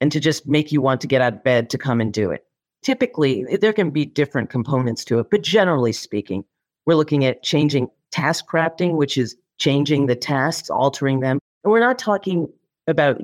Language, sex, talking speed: English, female, 205 wpm